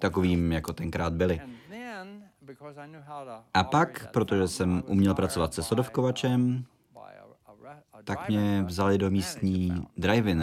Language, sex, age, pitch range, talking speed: Czech, male, 30-49, 90-125 Hz, 105 wpm